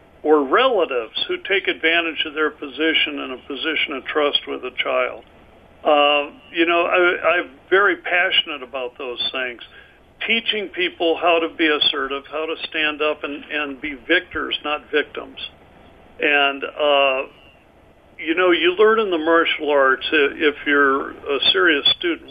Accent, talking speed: American, 155 wpm